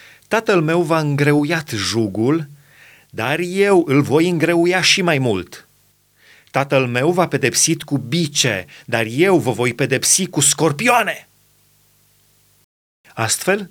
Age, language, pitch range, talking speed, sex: 30-49, Romanian, 130-165 Hz, 125 wpm, male